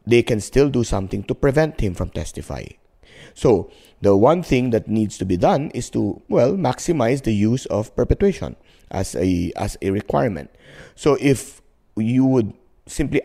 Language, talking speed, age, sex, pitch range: English, 170 wpm, 20-39, male, 100-130 Hz